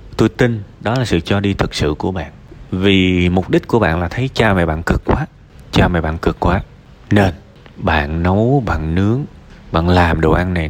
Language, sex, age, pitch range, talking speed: Vietnamese, male, 20-39, 90-125 Hz, 215 wpm